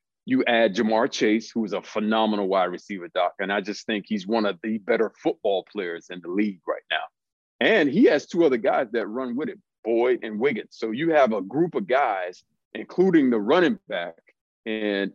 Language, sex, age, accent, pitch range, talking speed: English, male, 40-59, American, 110-145 Hz, 205 wpm